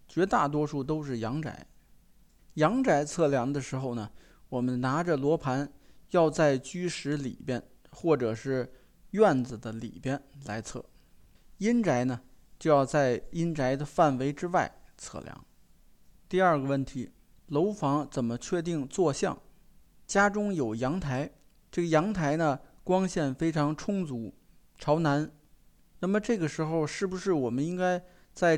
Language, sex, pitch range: Chinese, male, 135-185 Hz